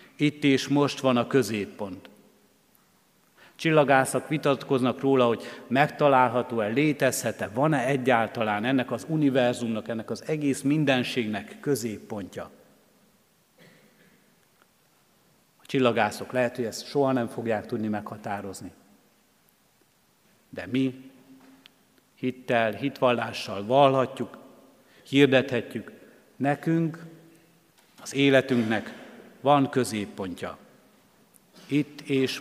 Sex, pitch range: male, 115-135 Hz